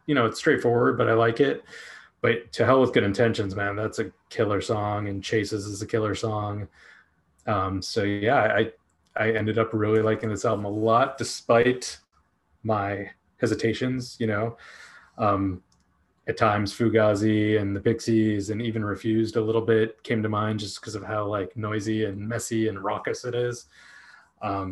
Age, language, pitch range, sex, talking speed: 20-39, English, 100-115 Hz, male, 175 wpm